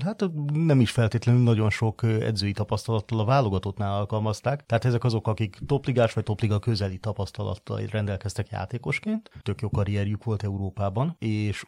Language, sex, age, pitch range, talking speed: Hungarian, male, 30-49, 100-115 Hz, 150 wpm